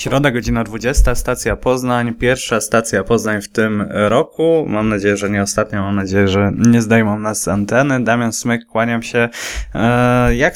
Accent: native